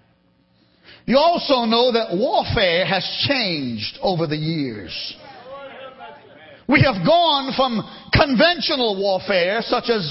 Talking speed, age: 105 wpm, 50-69